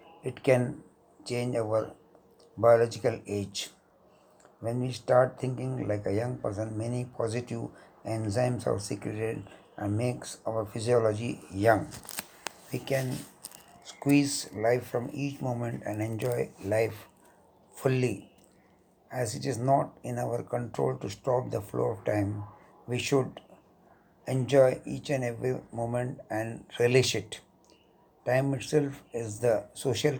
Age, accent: 60-79, native